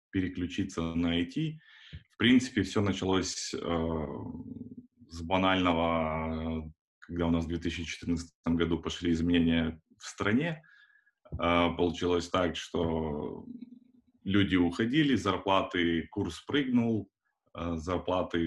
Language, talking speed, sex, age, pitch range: Russian, 100 wpm, male, 20-39, 85-110 Hz